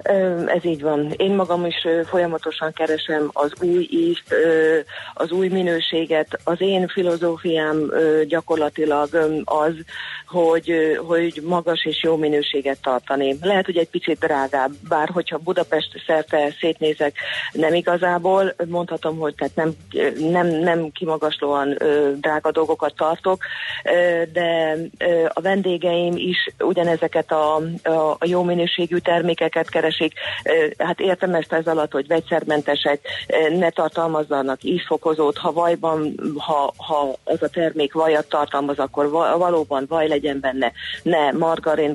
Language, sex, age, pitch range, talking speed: Hungarian, female, 40-59, 150-170 Hz, 125 wpm